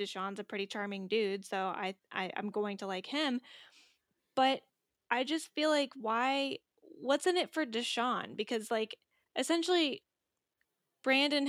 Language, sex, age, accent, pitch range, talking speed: English, female, 10-29, American, 215-275 Hz, 145 wpm